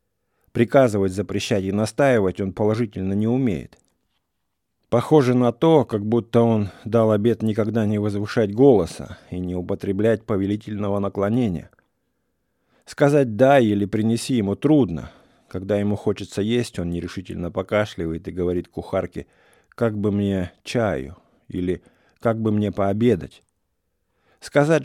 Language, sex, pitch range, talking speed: English, male, 95-115 Hz, 125 wpm